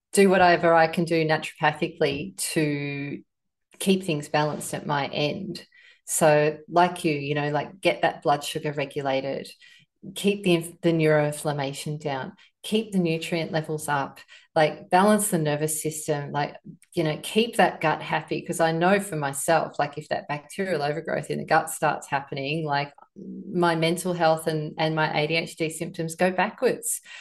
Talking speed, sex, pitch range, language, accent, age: 160 wpm, female, 155-180 Hz, English, Australian, 30-49